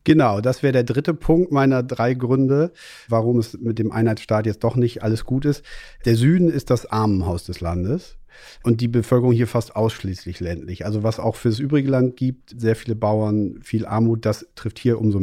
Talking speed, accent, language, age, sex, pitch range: 200 wpm, German, German, 40-59, male, 100-120 Hz